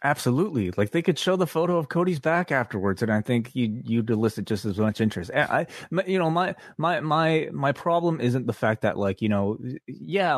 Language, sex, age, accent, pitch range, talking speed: English, male, 20-39, American, 100-125 Hz, 215 wpm